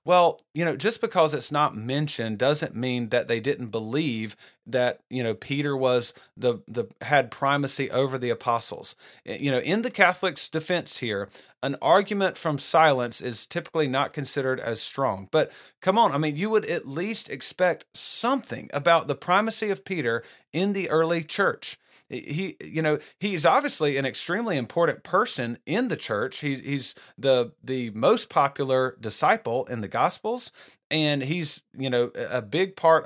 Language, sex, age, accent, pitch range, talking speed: English, male, 40-59, American, 130-170 Hz, 165 wpm